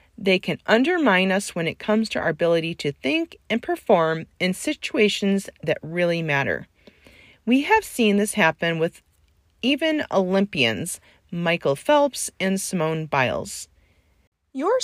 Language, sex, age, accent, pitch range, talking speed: English, female, 40-59, American, 165-230 Hz, 135 wpm